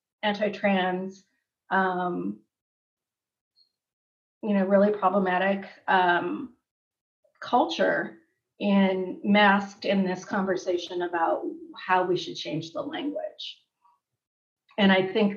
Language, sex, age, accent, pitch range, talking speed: English, female, 30-49, American, 175-210 Hz, 90 wpm